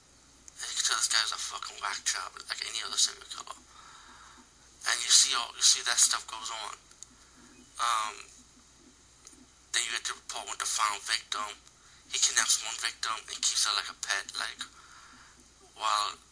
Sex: male